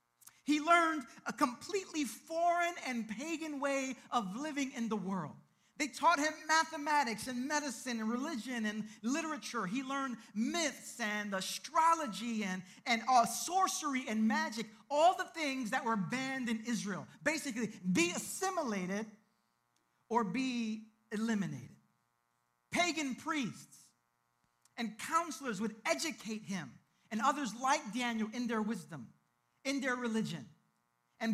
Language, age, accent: English, 40-59, American